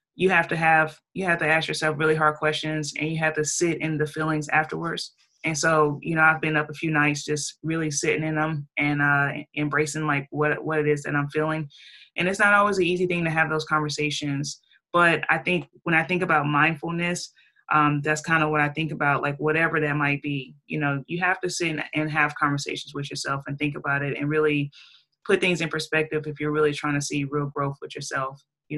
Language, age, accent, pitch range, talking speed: English, 20-39, American, 150-170 Hz, 230 wpm